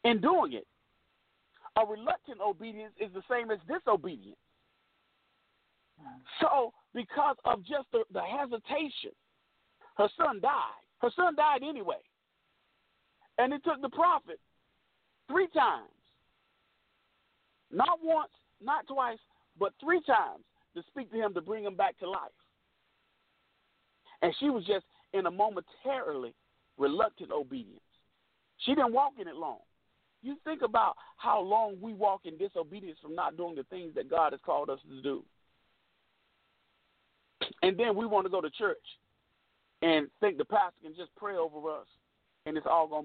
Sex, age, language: male, 50-69, English